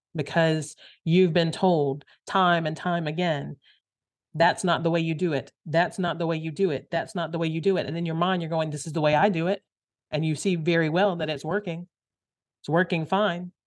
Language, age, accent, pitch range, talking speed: English, 40-59, American, 160-195 Hz, 235 wpm